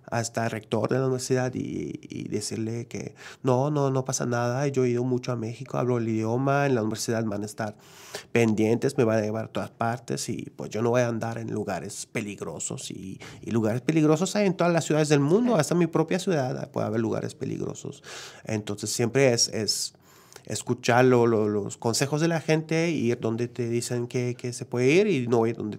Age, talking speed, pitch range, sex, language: 30-49, 220 wpm, 110-135 Hz, male, Spanish